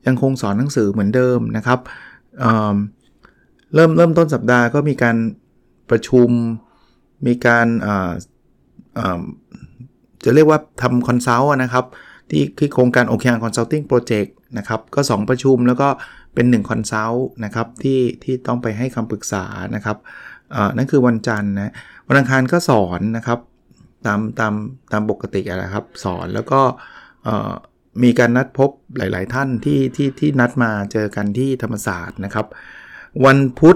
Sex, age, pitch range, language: male, 20-39, 110-130 Hz, Thai